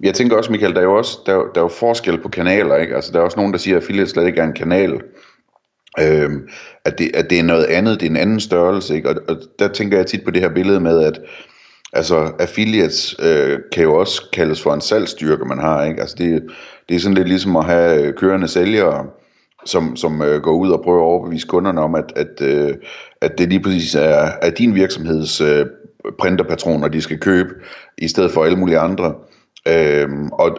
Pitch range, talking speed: 80-95 Hz, 190 wpm